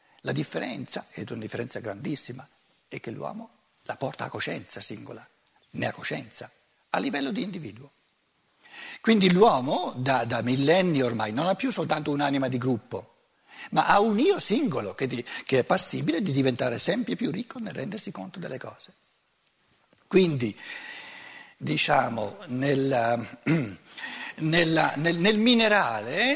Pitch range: 140-210 Hz